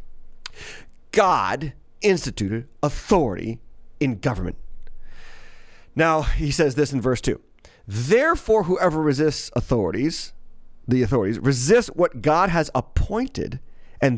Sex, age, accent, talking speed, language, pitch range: male, 40-59, American, 100 wpm, English, 115-150 Hz